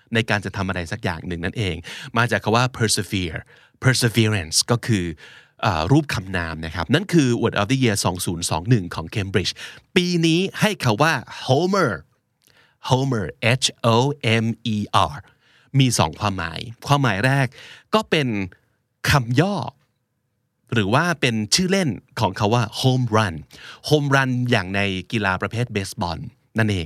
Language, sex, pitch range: Thai, male, 105-140 Hz